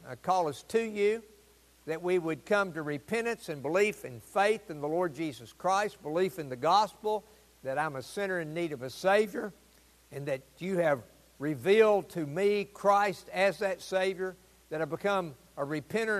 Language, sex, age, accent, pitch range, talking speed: English, male, 60-79, American, 125-175 Hz, 180 wpm